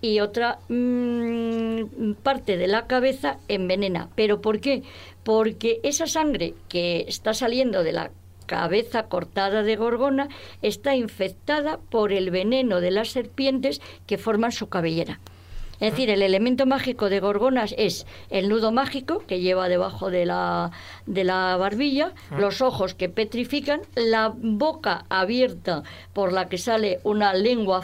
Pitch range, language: 185-235 Hz, Spanish